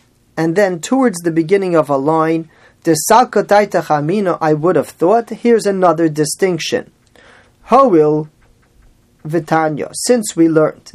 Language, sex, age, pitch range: English, male, 40-59, 155-170 Hz